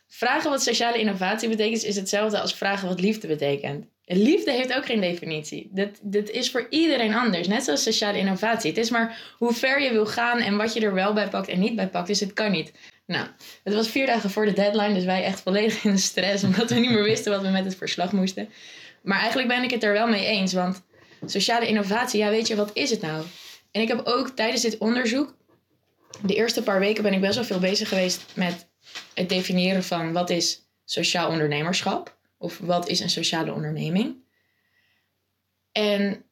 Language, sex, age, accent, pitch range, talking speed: Dutch, female, 20-39, Dutch, 185-230 Hz, 210 wpm